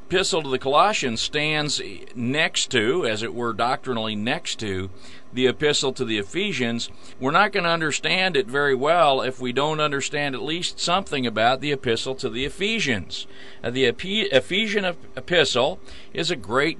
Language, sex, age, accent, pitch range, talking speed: English, male, 40-59, American, 125-150 Hz, 170 wpm